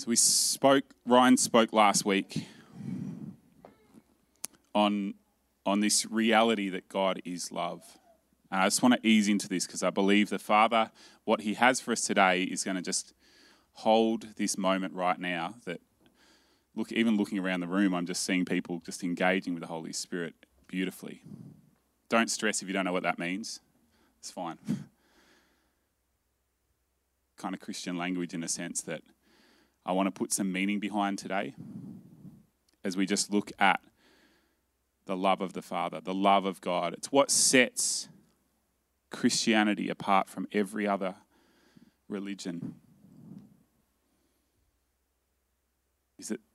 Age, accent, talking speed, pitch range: 20-39, Australian, 145 wpm, 90-110 Hz